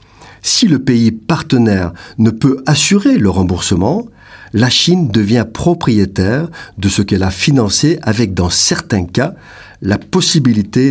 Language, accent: French, French